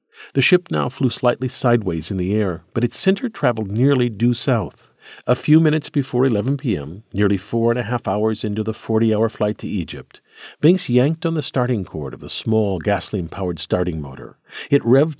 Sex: male